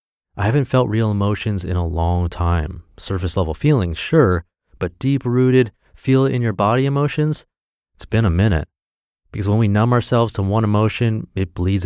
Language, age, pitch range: English, 30-49, 90-115 Hz